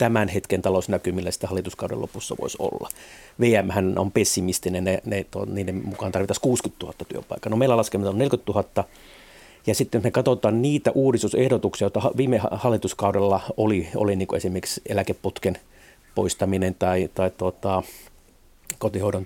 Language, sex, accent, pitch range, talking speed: Finnish, male, native, 95-115 Hz, 140 wpm